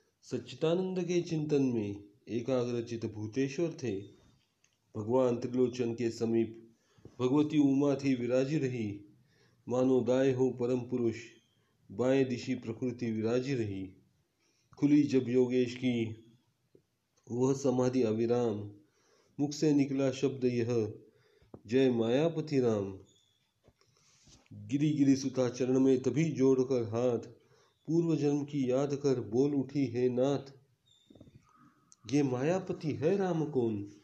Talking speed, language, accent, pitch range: 100 wpm, Marathi, native, 120-145 Hz